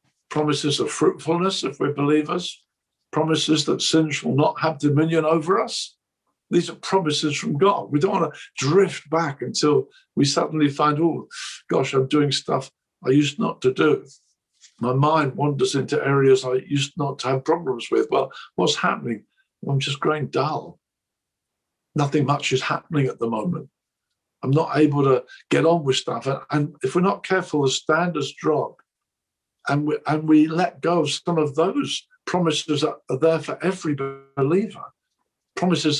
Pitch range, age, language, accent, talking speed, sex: 135-165 Hz, 60-79, English, British, 165 wpm, male